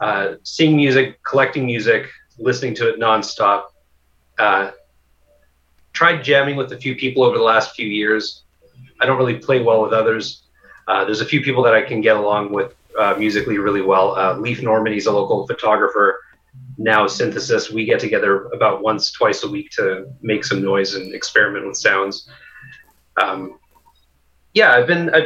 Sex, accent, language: male, American, English